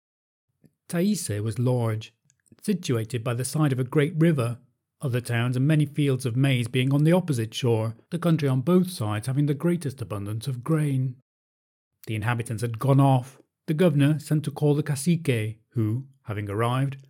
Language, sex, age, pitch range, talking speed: English, male, 40-59, 120-155 Hz, 170 wpm